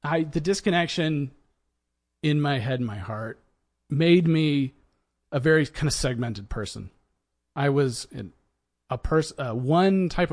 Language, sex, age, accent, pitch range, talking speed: English, male, 40-59, American, 100-145 Hz, 145 wpm